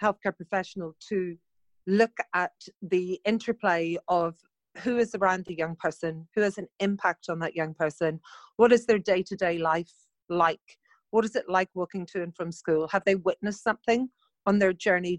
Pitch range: 165-195 Hz